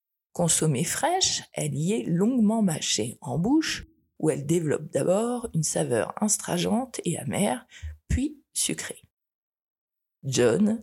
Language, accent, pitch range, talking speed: French, French, 140-215 Hz, 115 wpm